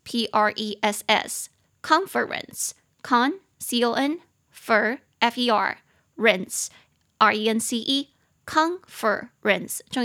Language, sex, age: Chinese, female, 20-39